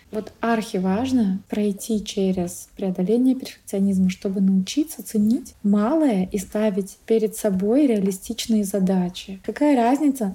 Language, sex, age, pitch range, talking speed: Russian, female, 20-39, 200-235 Hz, 105 wpm